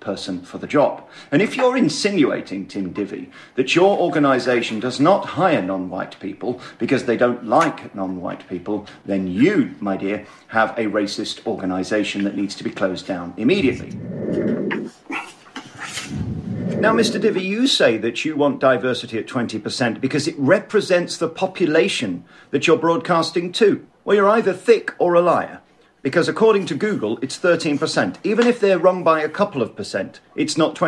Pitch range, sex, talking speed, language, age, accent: 120-195 Hz, male, 165 wpm, English, 50-69, British